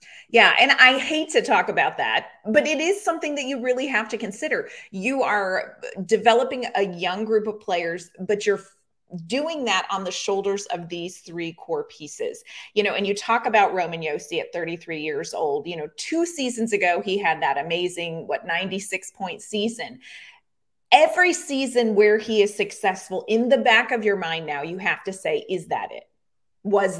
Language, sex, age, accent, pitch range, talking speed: English, female, 30-49, American, 185-250 Hz, 185 wpm